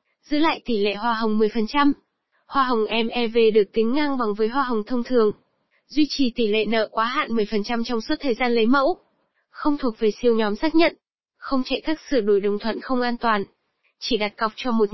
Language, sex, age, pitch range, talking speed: Vietnamese, female, 10-29, 220-265 Hz, 220 wpm